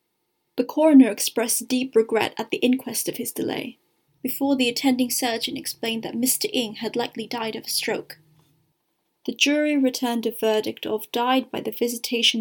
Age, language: 20-39, English